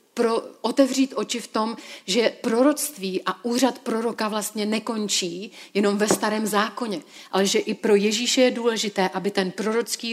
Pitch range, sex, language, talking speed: 195-235 Hz, female, Czech, 155 wpm